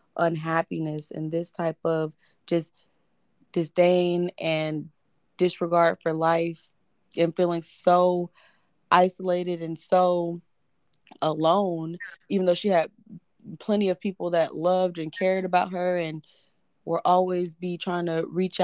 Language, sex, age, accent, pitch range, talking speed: English, female, 20-39, American, 165-185 Hz, 120 wpm